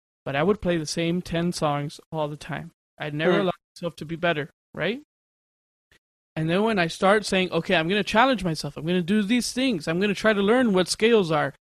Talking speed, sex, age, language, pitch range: 235 wpm, male, 20-39, English, 170-215 Hz